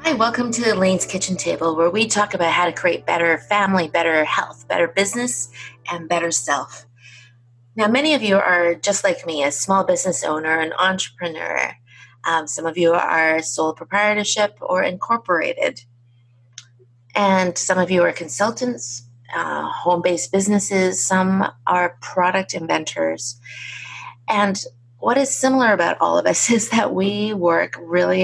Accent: American